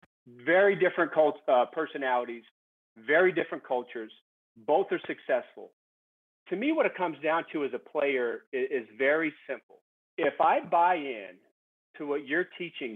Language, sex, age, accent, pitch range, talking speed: English, male, 40-59, American, 140-210 Hz, 150 wpm